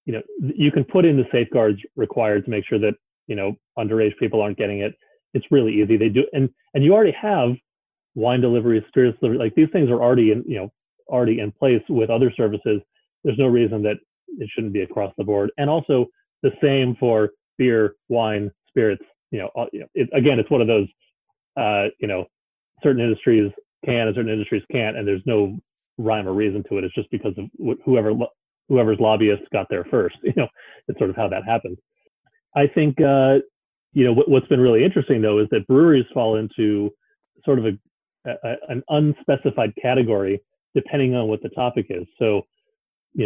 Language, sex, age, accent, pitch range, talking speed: English, male, 30-49, American, 105-135 Hz, 195 wpm